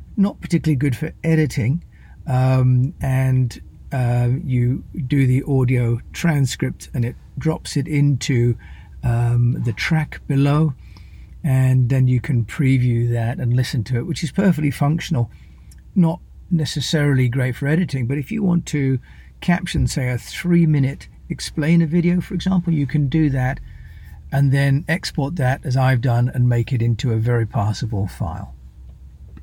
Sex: male